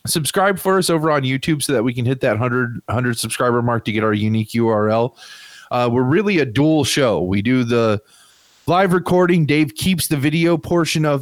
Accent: American